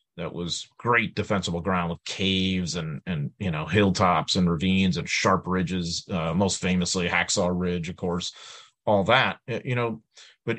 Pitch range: 95-130 Hz